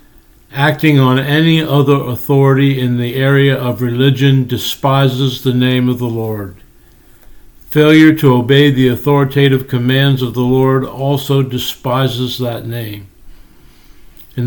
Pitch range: 125-145 Hz